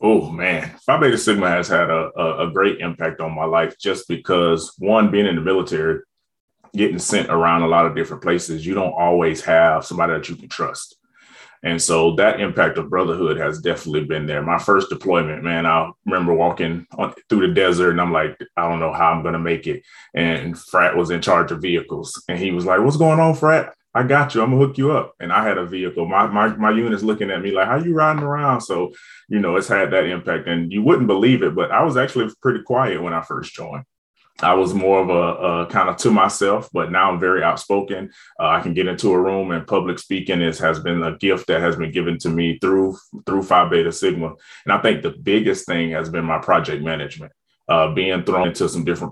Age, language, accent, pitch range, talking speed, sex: 30-49, English, American, 80-95 Hz, 240 wpm, male